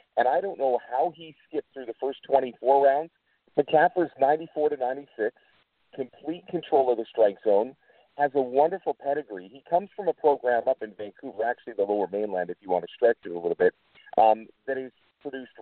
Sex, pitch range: male, 115-150 Hz